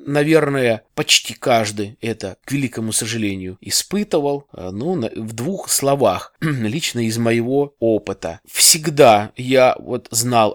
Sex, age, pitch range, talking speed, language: male, 20-39, 110-140 Hz, 115 wpm, Russian